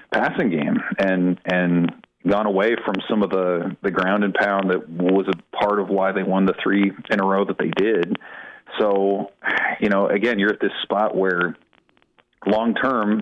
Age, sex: 40-59, male